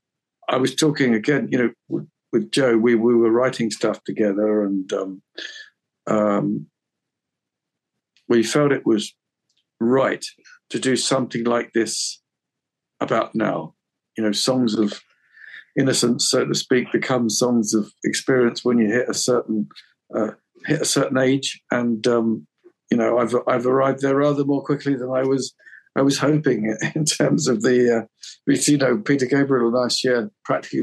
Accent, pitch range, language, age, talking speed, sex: British, 115-140 Hz, English, 50-69, 160 wpm, male